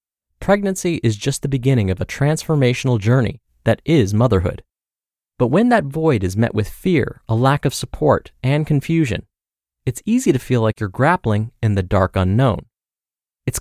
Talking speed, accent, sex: 170 wpm, American, male